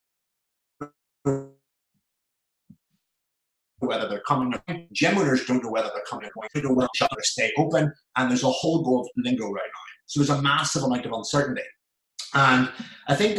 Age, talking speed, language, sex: 30-49, 150 wpm, English, male